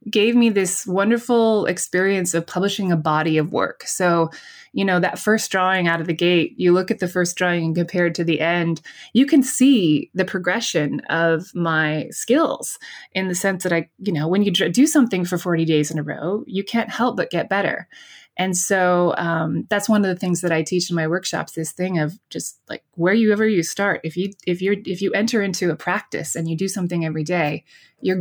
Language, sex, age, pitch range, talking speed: English, female, 20-39, 165-200 Hz, 220 wpm